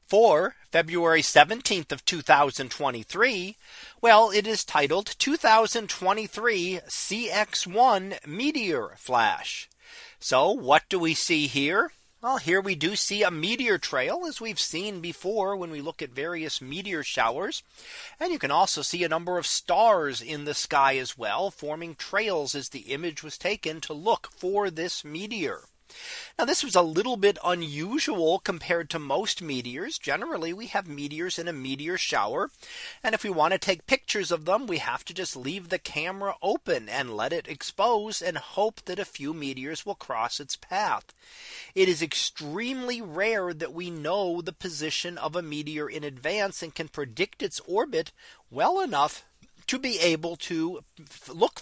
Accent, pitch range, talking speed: American, 155-215 Hz, 160 wpm